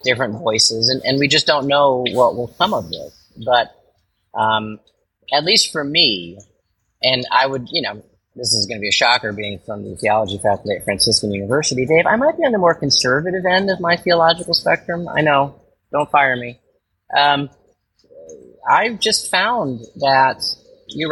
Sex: male